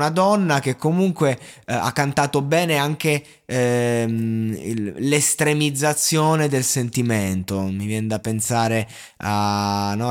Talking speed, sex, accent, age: 120 wpm, male, native, 20-39